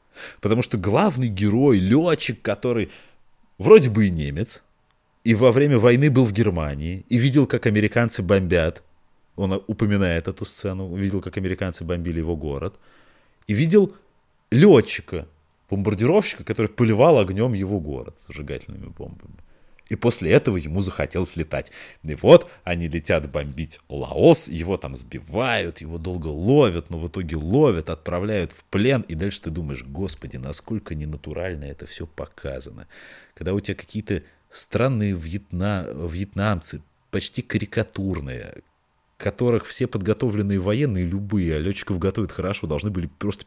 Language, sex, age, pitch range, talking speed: Russian, male, 30-49, 85-110 Hz, 135 wpm